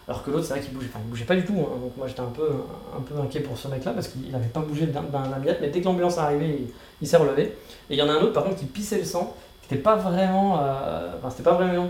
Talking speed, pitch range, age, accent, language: 325 wpm, 135-165 Hz, 30-49, French, French